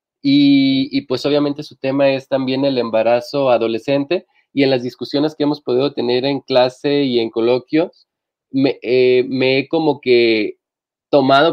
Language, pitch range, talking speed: Spanish, 130-170 Hz, 160 wpm